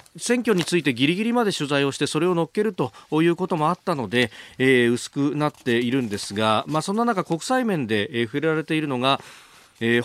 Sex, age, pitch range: male, 40-59, 110-155 Hz